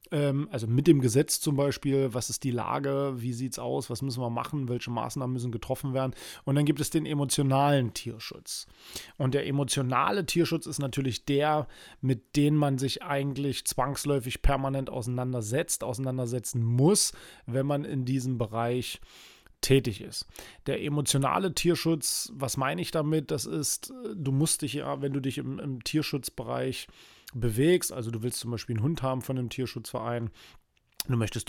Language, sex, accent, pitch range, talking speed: German, male, German, 125-150 Hz, 165 wpm